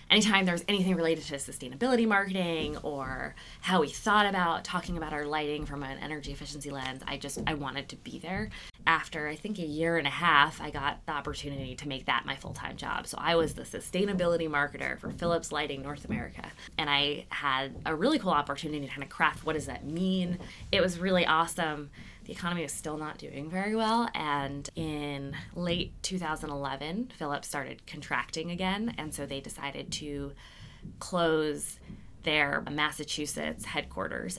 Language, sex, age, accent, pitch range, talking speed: English, female, 20-39, American, 140-185 Hz, 175 wpm